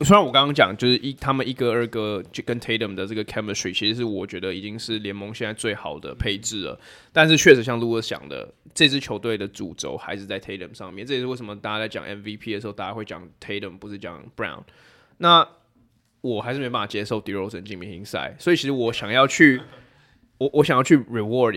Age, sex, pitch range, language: 20-39, male, 100-125 Hz, Chinese